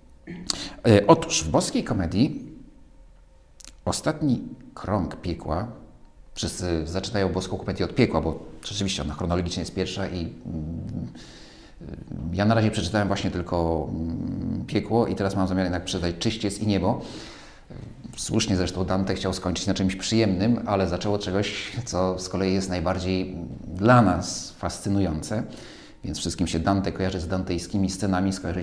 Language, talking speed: Polish, 145 wpm